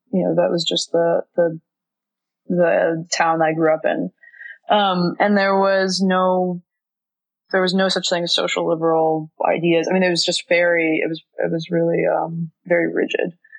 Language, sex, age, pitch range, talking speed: English, female, 20-39, 170-210 Hz, 180 wpm